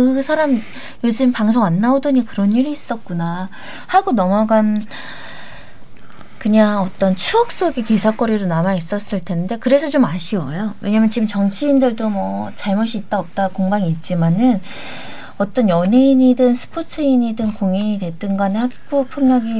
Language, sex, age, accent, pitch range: Korean, female, 20-39, native, 195-255 Hz